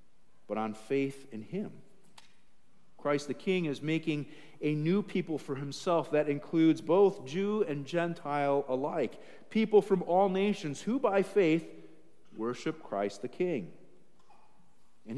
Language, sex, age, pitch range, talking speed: English, male, 50-69, 125-170 Hz, 135 wpm